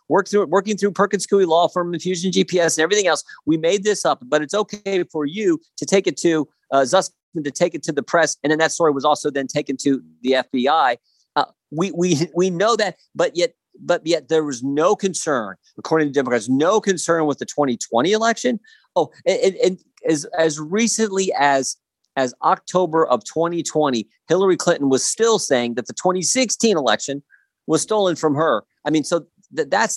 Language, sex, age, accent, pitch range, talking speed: English, male, 50-69, American, 140-200 Hz, 190 wpm